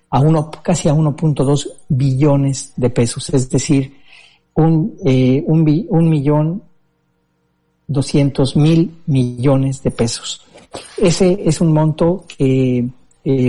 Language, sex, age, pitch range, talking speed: Spanish, male, 50-69, 125-155 Hz, 115 wpm